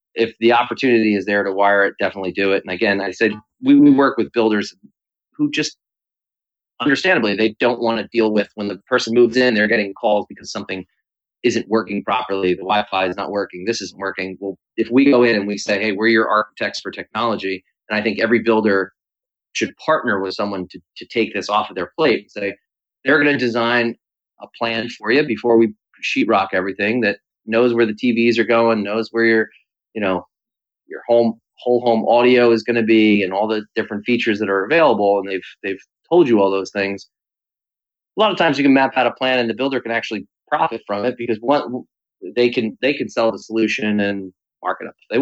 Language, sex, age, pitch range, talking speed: English, male, 30-49, 100-120 Hz, 220 wpm